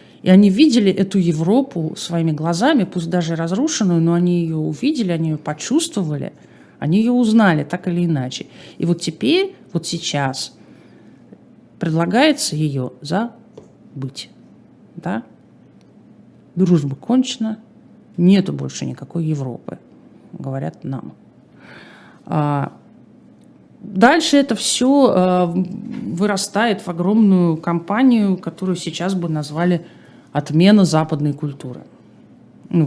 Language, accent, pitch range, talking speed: Russian, native, 155-210 Hz, 100 wpm